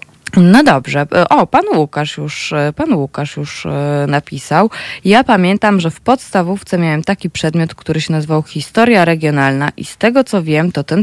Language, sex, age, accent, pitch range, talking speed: Polish, female, 20-39, native, 155-205 Hz, 165 wpm